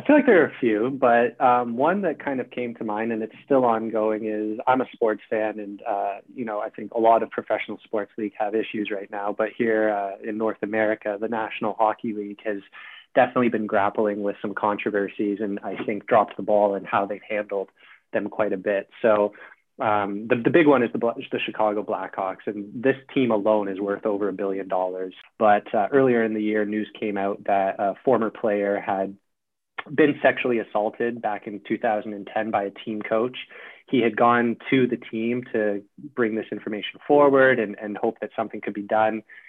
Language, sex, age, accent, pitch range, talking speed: English, male, 20-39, American, 100-115 Hz, 210 wpm